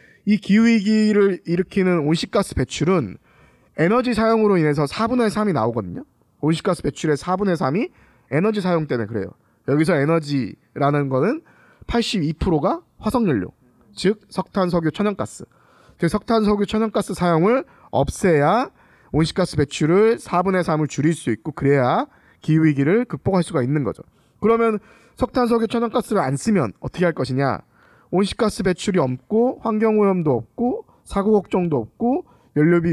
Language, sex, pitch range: Korean, male, 140-210 Hz